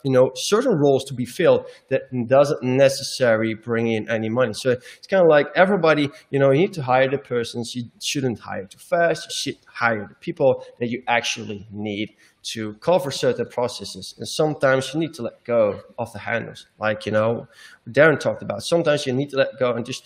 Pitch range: 120-155 Hz